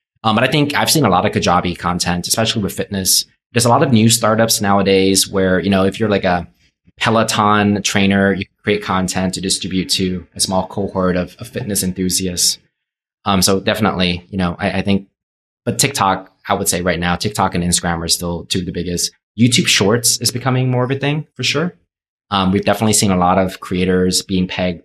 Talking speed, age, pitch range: 210 wpm, 20-39, 90-110 Hz